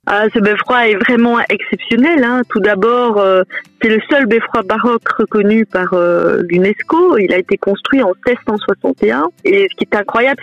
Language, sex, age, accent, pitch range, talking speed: French, female, 30-49, French, 200-270 Hz, 175 wpm